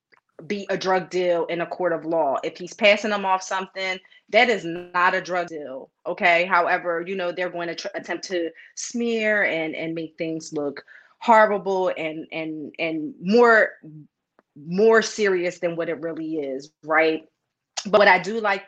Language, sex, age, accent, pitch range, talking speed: English, female, 30-49, American, 165-195 Hz, 175 wpm